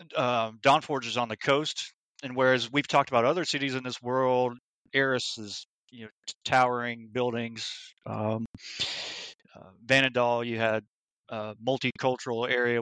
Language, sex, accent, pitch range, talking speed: English, male, American, 110-130 Hz, 145 wpm